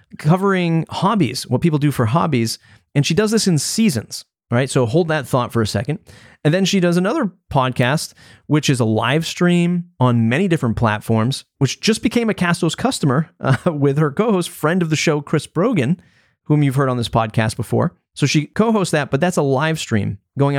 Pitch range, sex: 120-160 Hz, male